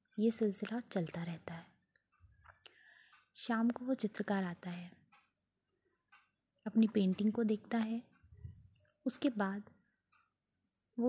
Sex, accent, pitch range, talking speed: female, native, 195-240 Hz, 105 wpm